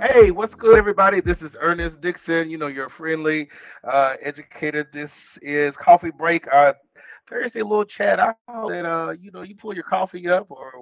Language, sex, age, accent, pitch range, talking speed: English, male, 40-59, American, 130-165 Hz, 185 wpm